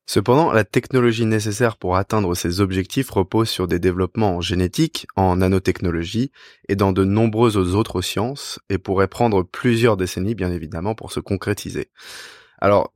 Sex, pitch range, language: male, 95-115 Hz, French